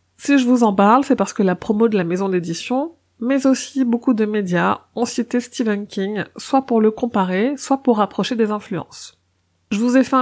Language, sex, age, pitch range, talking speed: French, female, 30-49, 190-235 Hz, 210 wpm